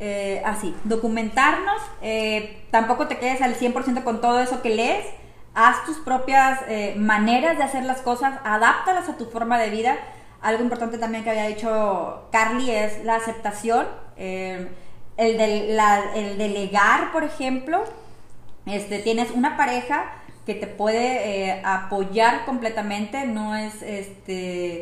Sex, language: female, Spanish